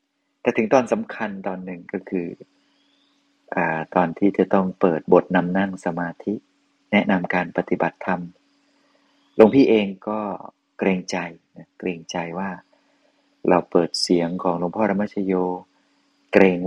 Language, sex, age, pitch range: Thai, male, 30-49, 95-120 Hz